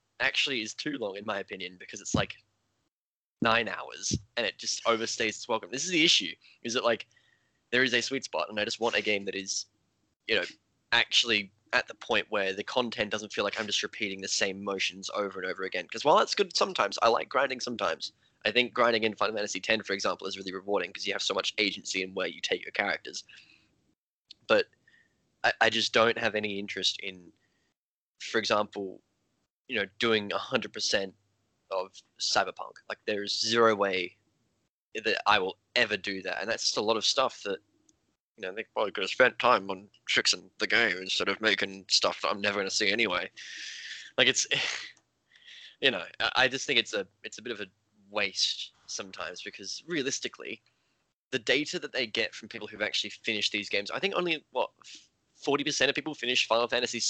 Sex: male